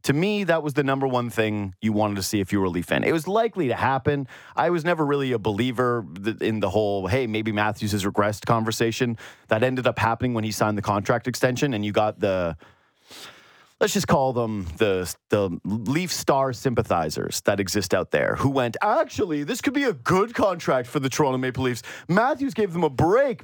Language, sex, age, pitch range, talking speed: English, male, 30-49, 110-170 Hz, 215 wpm